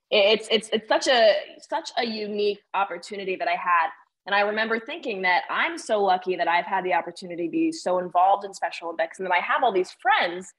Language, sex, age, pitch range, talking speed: English, female, 20-39, 180-225 Hz, 220 wpm